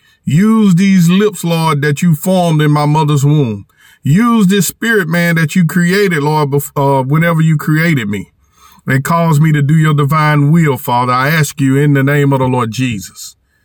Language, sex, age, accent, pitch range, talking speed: English, male, 40-59, American, 140-180 Hz, 190 wpm